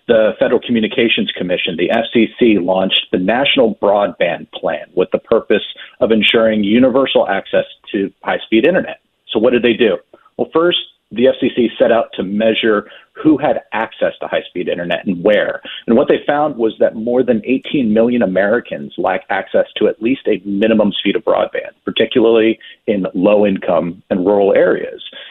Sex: male